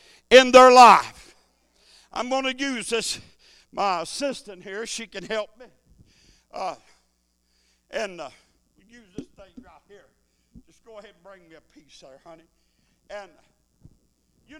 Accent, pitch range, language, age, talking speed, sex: American, 200-265 Hz, English, 60-79, 145 wpm, male